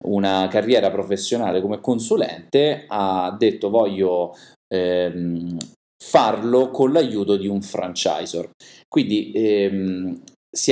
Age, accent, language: 30-49, native, Italian